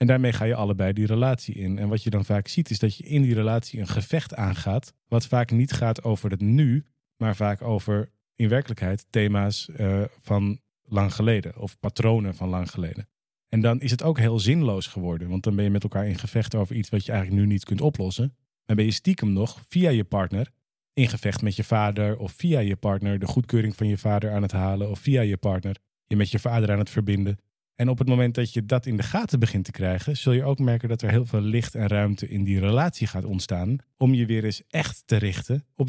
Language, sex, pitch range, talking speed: Dutch, male, 100-125 Hz, 240 wpm